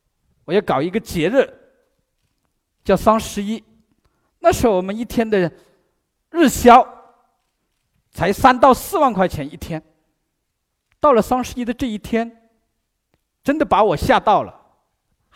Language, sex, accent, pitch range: Chinese, male, native, 185-260 Hz